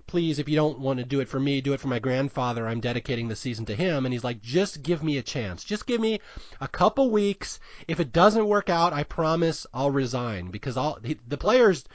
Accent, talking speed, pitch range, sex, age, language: American, 235 wpm, 120-155 Hz, male, 30-49, English